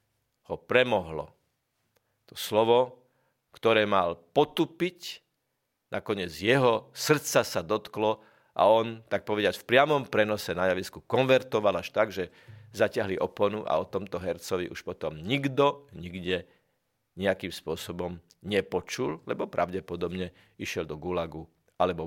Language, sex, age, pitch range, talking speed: Slovak, male, 50-69, 95-125 Hz, 115 wpm